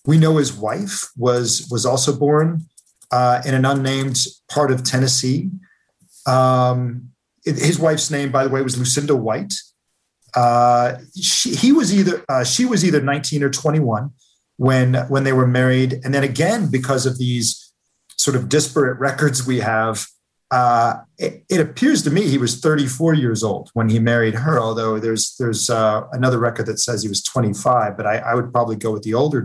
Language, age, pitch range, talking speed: English, 40-59, 120-145 Hz, 180 wpm